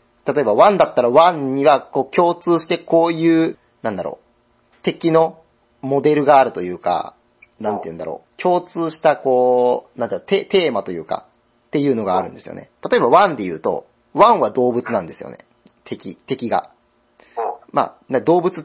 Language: Japanese